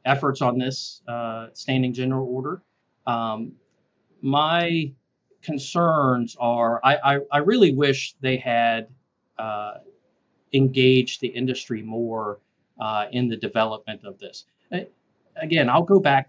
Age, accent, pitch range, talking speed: 40-59, American, 115-135 Hz, 120 wpm